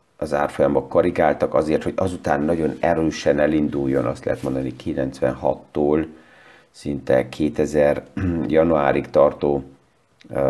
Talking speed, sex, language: 105 wpm, male, Hungarian